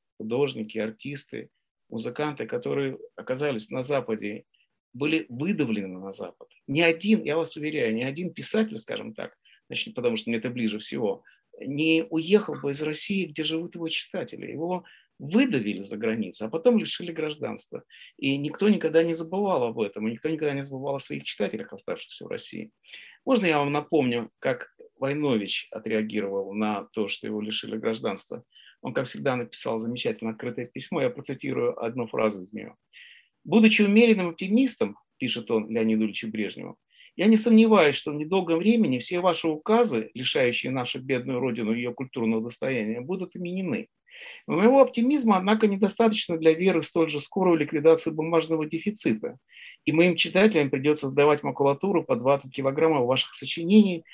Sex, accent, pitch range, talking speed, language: male, native, 130-200 Hz, 155 wpm, Russian